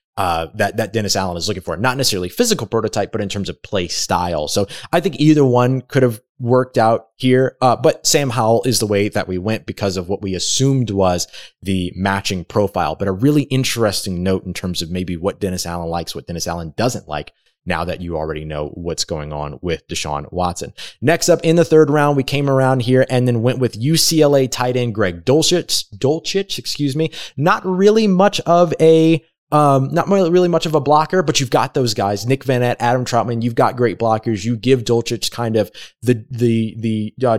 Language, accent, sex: English, American, male